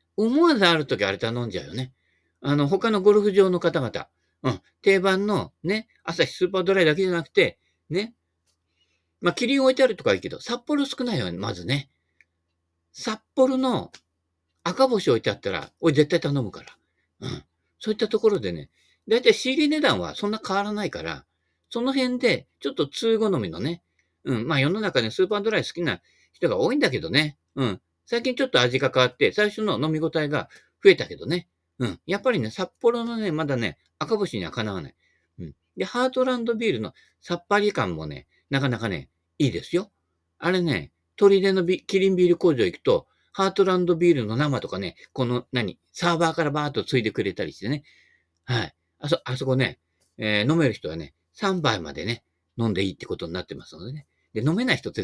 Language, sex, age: Japanese, male, 50-69